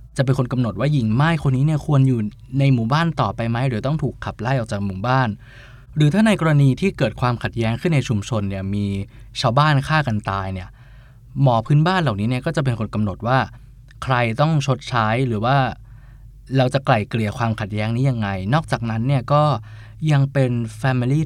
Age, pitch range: 20-39, 110-135 Hz